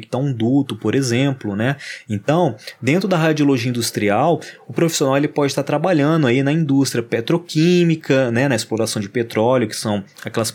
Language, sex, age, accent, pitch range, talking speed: Portuguese, male, 20-39, Brazilian, 115-140 Hz, 175 wpm